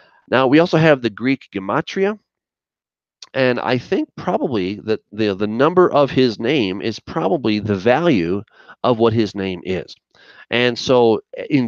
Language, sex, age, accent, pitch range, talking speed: English, male, 40-59, American, 105-135 Hz, 155 wpm